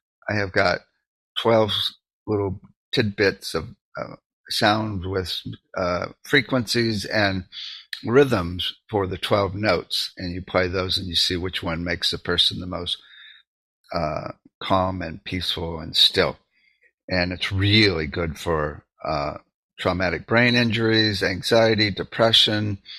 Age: 50-69